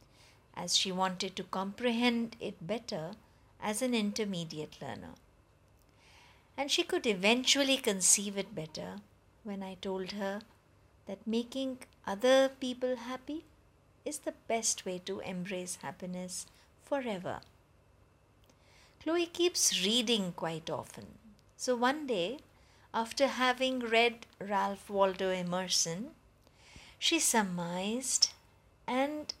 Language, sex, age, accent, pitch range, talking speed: English, female, 50-69, Indian, 180-255 Hz, 105 wpm